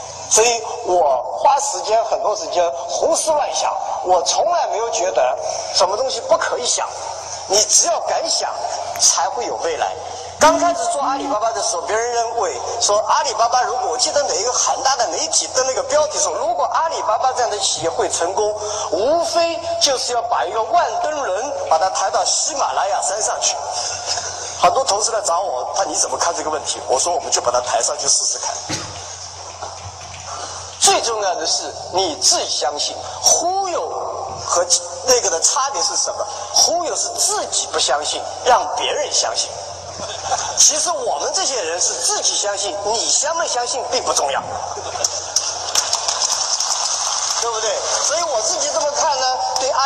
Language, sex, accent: Chinese, male, native